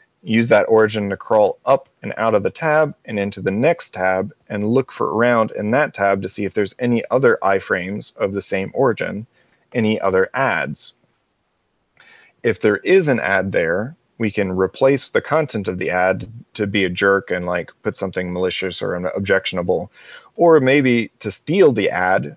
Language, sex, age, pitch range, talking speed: English, male, 30-49, 100-125 Hz, 180 wpm